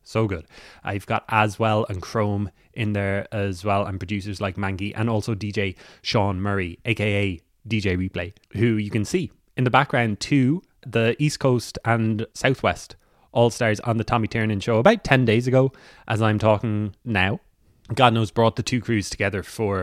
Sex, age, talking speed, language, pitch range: male, 20-39, 180 wpm, English, 100-125 Hz